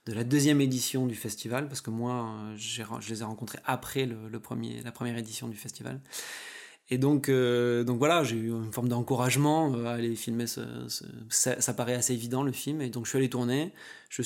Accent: French